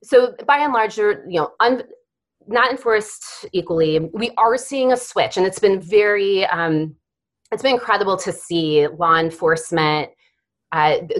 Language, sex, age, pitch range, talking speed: English, female, 30-49, 160-225 Hz, 155 wpm